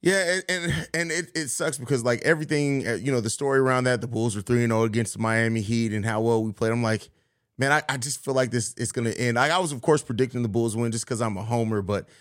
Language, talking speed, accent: English, 280 wpm, American